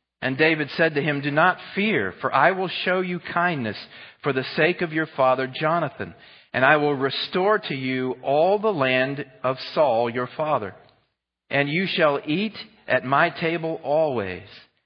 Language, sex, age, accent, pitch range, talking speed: English, male, 40-59, American, 110-150 Hz, 170 wpm